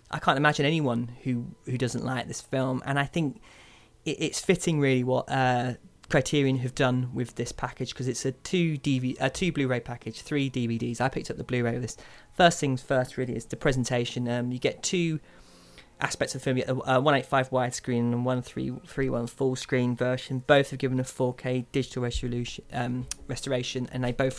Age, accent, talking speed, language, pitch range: 20-39, British, 205 wpm, English, 125-140 Hz